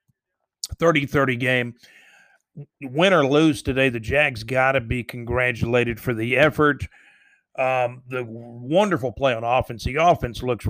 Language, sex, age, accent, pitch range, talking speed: English, male, 40-59, American, 125-155 Hz, 135 wpm